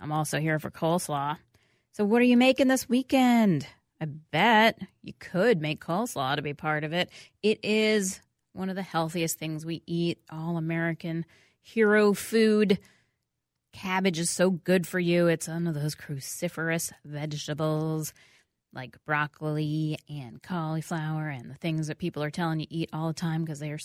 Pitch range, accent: 155-200 Hz, American